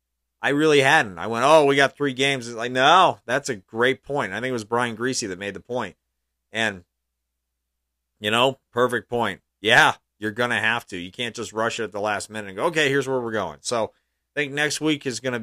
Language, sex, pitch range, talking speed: English, male, 80-130 Hz, 240 wpm